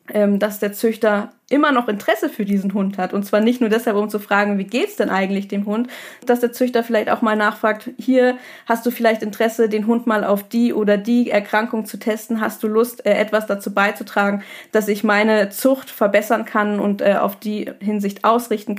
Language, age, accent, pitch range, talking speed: German, 20-39, German, 200-225 Hz, 200 wpm